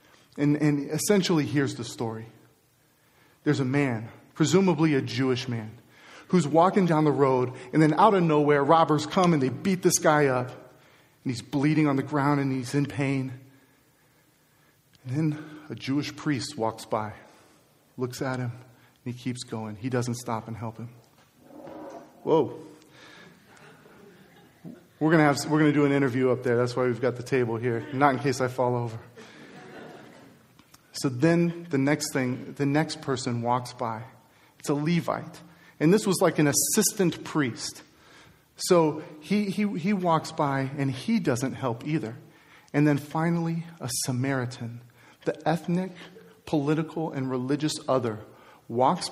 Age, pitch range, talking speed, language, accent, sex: 40-59, 125-155 Hz, 155 wpm, English, American, male